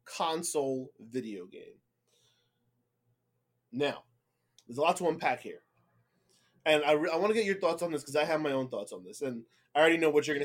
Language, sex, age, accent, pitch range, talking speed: English, male, 20-39, American, 120-155 Hz, 195 wpm